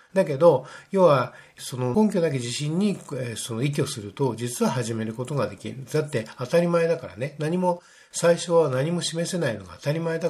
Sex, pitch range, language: male, 125-170 Hz, Japanese